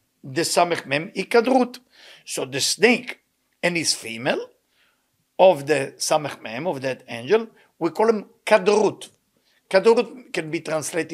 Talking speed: 120 wpm